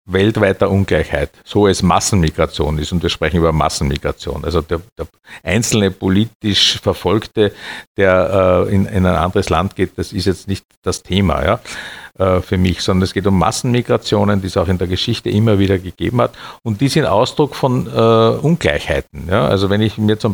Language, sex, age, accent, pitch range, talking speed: German, male, 50-69, Austrian, 95-110 Hz, 175 wpm